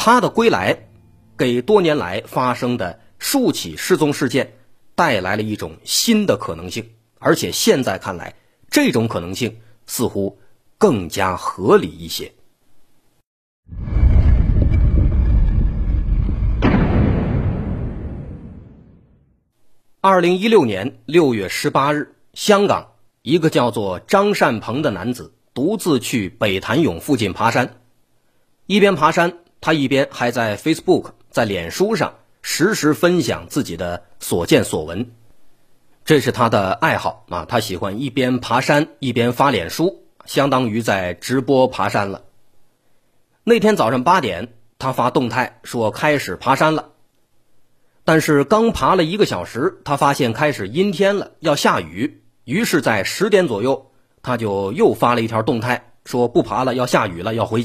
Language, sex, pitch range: Chinese, male, 110-150 Hz